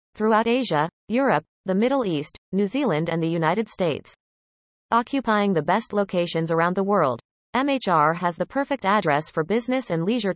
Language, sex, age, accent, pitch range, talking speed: English, female, 30-49, American, 165-230 Hz, 160 wpm